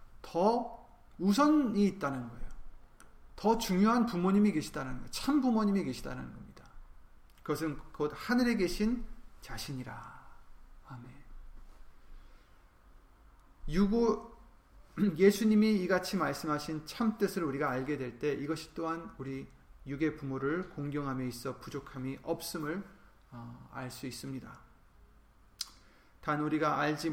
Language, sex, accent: Korean, male, native